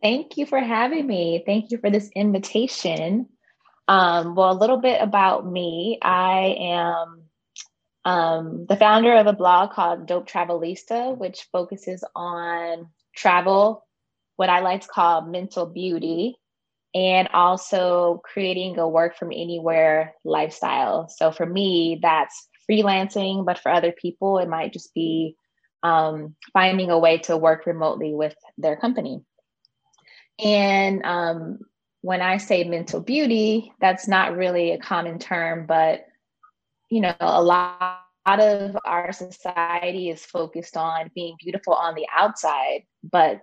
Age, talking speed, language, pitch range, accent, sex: 20-39, 140 wpm, English, 170-205 Hz, American, female